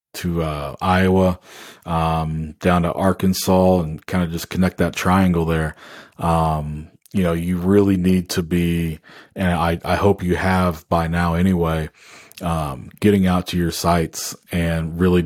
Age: 40-59